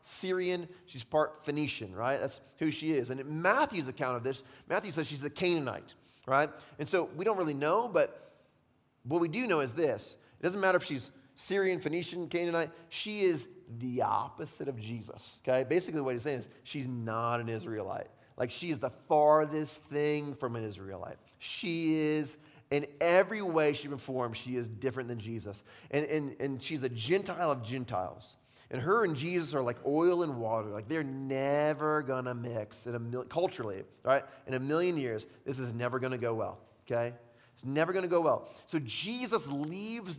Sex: male